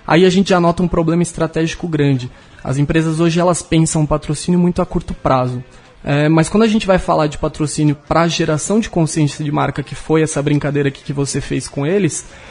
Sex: male